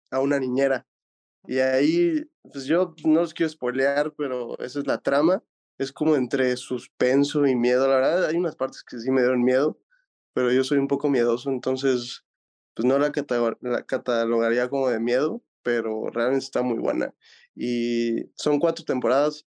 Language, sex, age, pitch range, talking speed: Spanish, male, 20-39, 125-155 Hz, 175 wpm